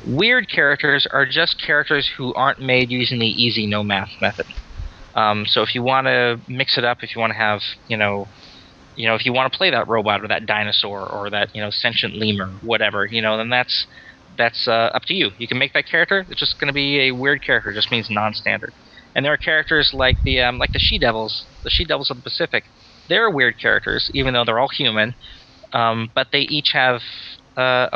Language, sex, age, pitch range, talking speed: English, male, 20-39, 110-135 Hz, 225 wpm